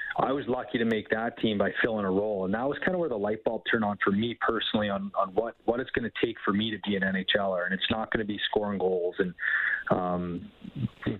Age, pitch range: 30-49, 100-115 Hz